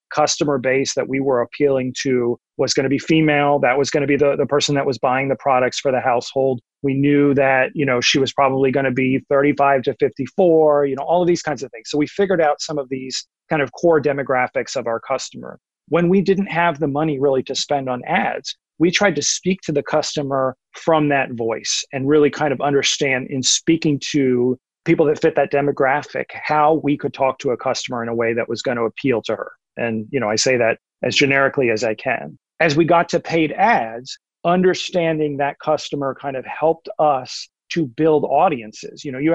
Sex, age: male, 40-59